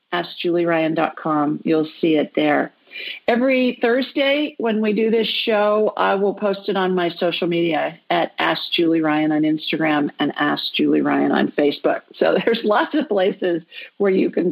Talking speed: 150 wpm